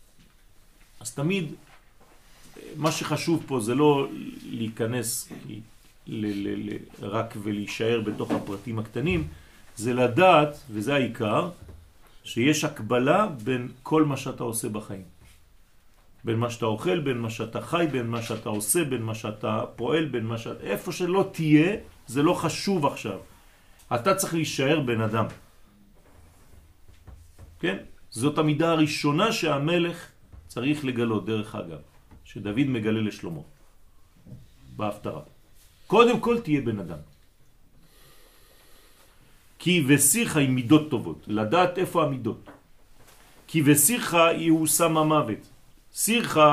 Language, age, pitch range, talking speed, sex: French, 40-59, 105-155 Hz, 110 wpm, male